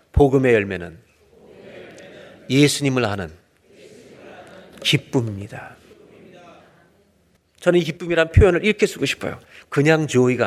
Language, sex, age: Korean, male, 40-59